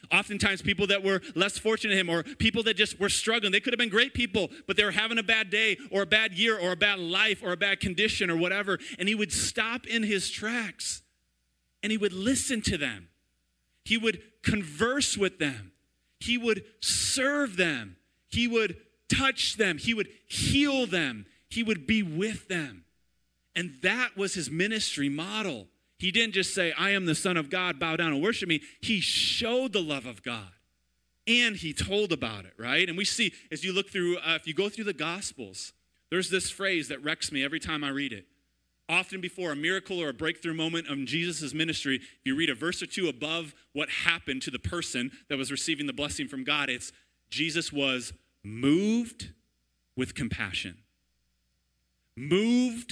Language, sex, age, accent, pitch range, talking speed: English, male, 30-49, American, 140-210 Hz, 195 wpm